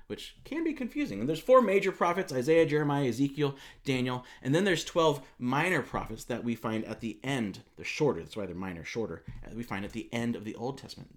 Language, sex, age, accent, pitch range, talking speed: English, male, 30-49, American, 110-145 Hz, 220 wpm